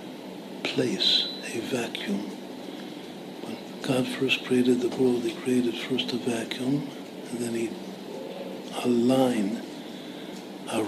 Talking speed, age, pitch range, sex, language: 110 wpm, 60-79, 120-135 Hz, male, Hebrew